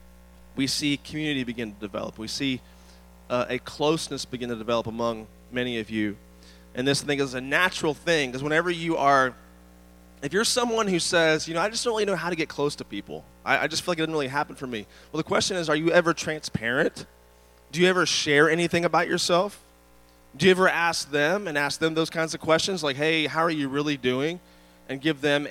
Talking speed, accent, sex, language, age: 225 wpm, American, male, English, 30-49